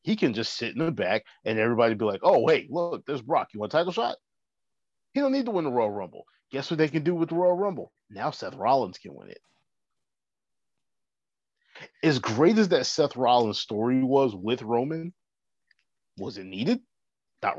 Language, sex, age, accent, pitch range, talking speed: English, male, 30-49, American, 110-165 Hz, 200 wpm